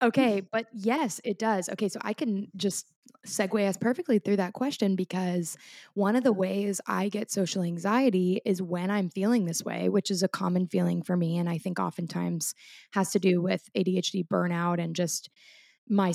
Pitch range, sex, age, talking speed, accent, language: 175-200 Hz, female, 20-39, 190 wpm, American, English